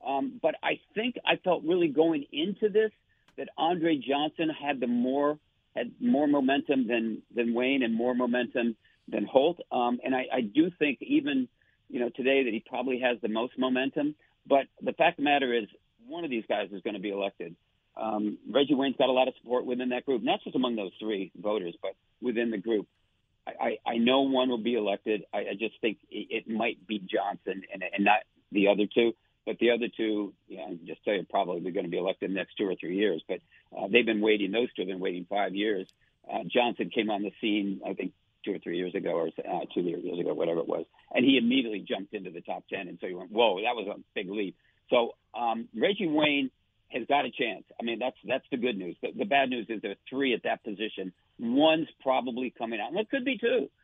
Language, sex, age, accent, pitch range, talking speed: English, male, 50-69, American, 115-155 Hz, 235 wpm